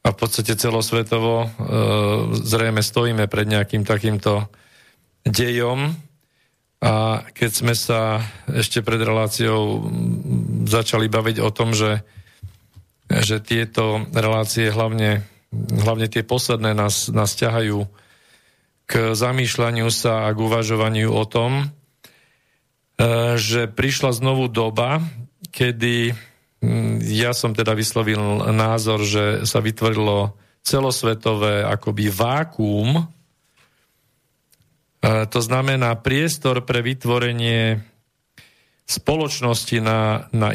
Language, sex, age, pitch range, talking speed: Slovak, male, 40-59, 110-125 Hz, 100 wpm